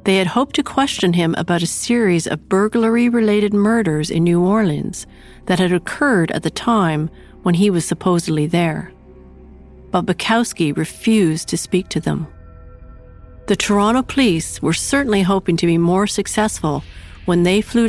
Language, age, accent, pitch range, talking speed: English, 50-69, American, 155-210 Hz, 160 wpm